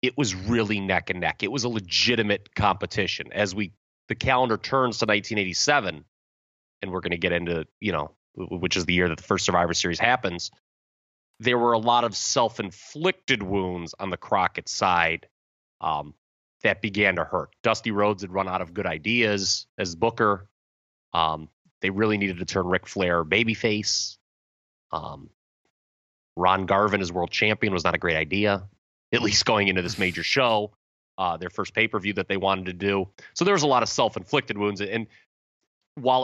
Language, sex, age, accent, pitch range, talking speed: English, male, 30-49, American, 90-110 Hz, 185 wpm